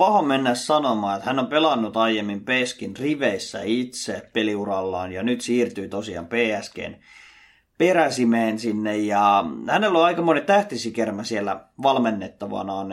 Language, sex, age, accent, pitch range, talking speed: Finnish, male, 30-49, native, 110-140 Hz, 125 wpm